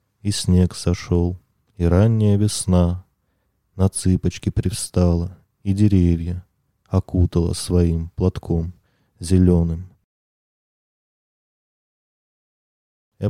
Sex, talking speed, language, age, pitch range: male, 70 wpm, Russian, 20-39, 90-105 Hz